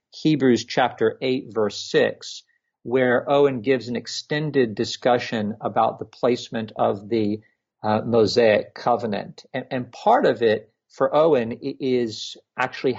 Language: English